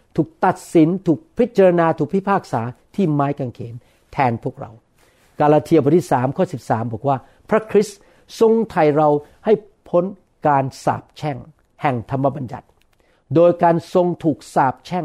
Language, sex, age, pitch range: Thai, male, 60-79, 135-180 Hz